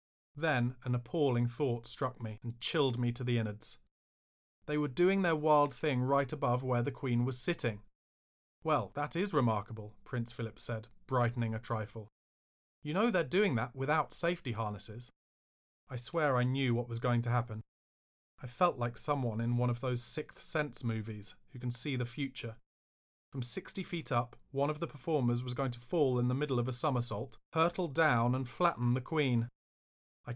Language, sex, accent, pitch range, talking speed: English, male, British, 110-140 Hz, 185 wpm